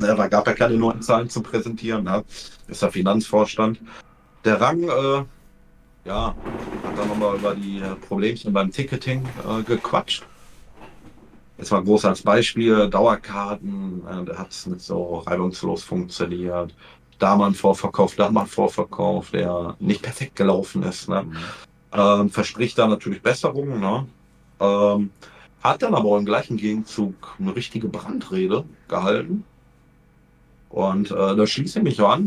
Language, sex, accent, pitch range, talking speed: German, male, German, 95-115 Hz, 145 wpm